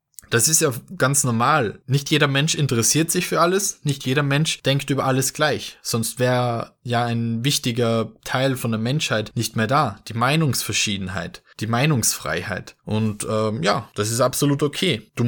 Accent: German